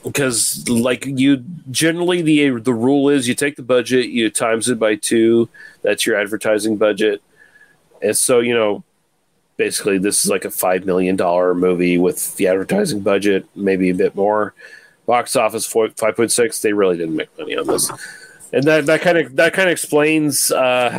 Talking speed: 185 wpm